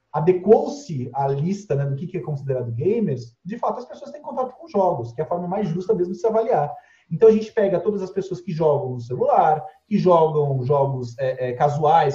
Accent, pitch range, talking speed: Brazilian, 135-185 Hz, 215 wpm